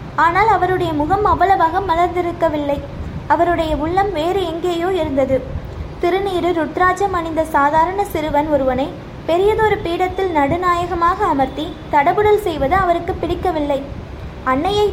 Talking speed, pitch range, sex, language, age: 100 wpm, 305-370 Hz, female, Tamil, 20-39